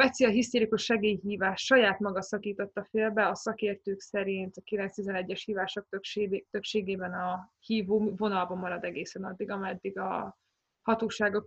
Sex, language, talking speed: female, Hungarian, 130 wpm